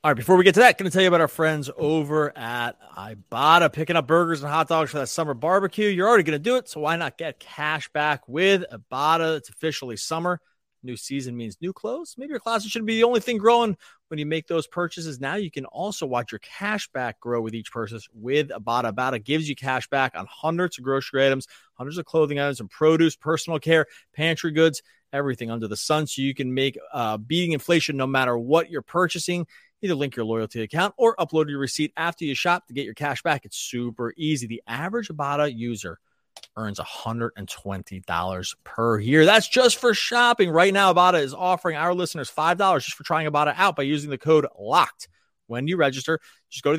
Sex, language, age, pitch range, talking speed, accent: male, English, 30-49, 125-170 Hz, 220 wpm, American